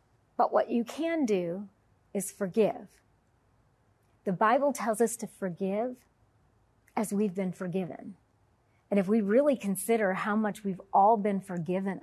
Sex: female